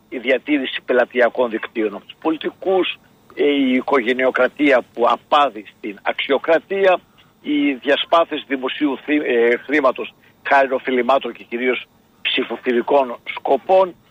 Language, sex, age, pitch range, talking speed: Greek, male, 60-79, 120-165 Hz, 100 wpm